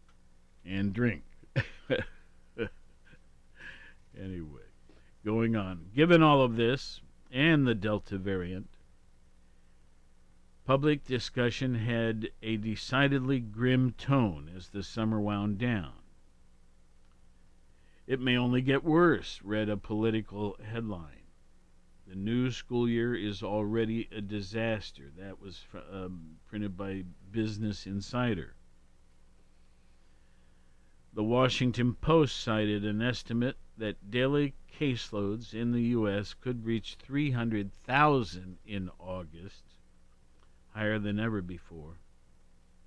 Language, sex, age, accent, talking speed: English, male, 50-69, American, 100 wpm